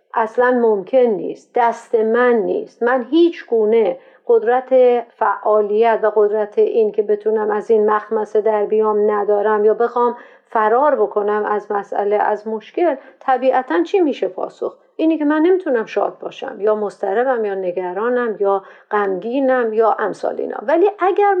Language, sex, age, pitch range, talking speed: Persian, female, 50-69, 215-330 Hz, 135 wpm